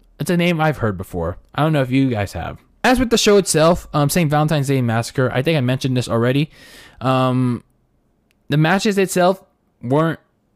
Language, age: English, 20-39